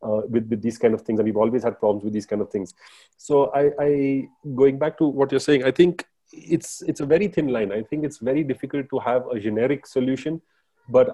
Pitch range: 120-145 Hz